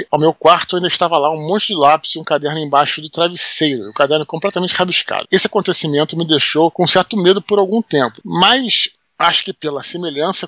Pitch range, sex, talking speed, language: 150-180 Hz, male, 200 wpm, Portuguese